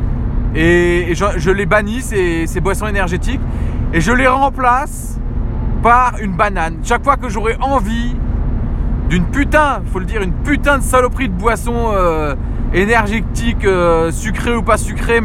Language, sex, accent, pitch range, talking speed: French, male, French, 155-245 Hz, 155 wpm